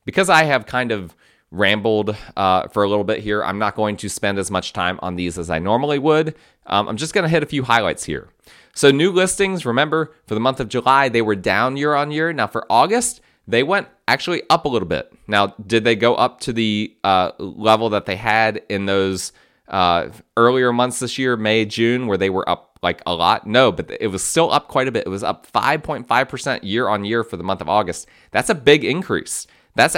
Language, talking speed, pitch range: English, 230 wpm, 95-125 Hz